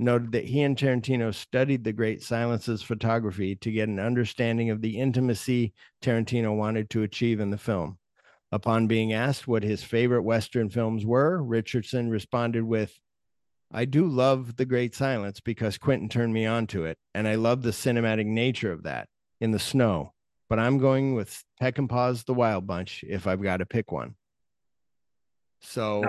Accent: American